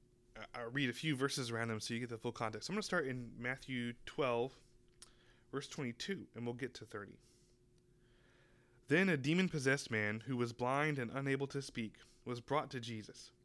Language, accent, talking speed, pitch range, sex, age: English, American, 185 wpm, 120-145 Hz, male, 20-39